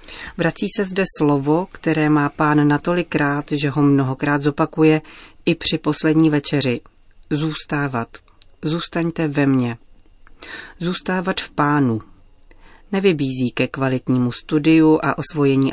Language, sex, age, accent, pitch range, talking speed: Czech, female, 40-59, native, 135-165 Hz, 110 wpm